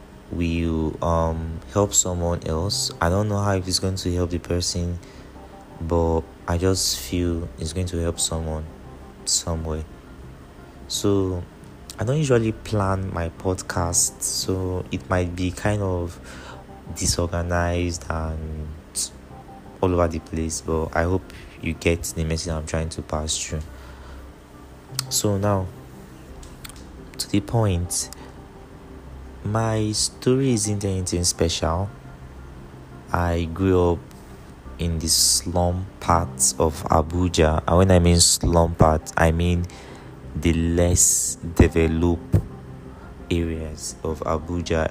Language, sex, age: English, male, 30-49